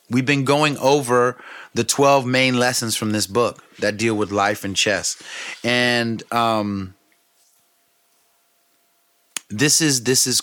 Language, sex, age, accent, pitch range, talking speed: English, male, 30-49, American, 105-140 Hz, 130 wpm